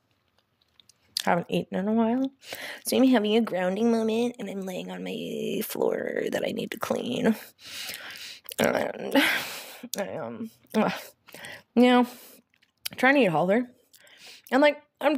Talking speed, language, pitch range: 155 wpm, English, 195-275 Hz